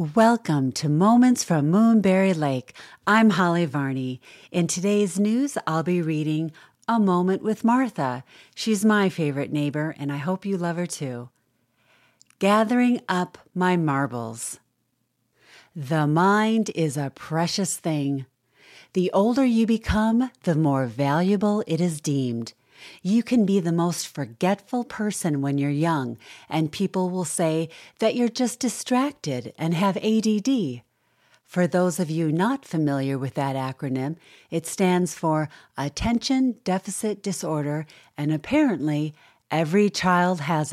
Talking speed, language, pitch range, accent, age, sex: 135 wpm, English, 145-205 Hz, American, 40-59, female